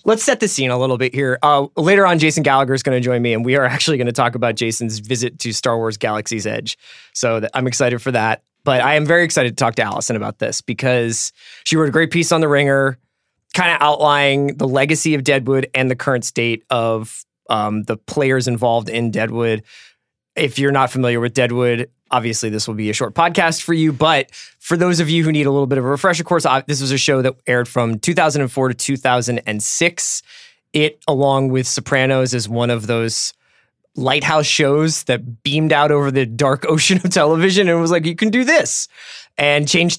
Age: 20-39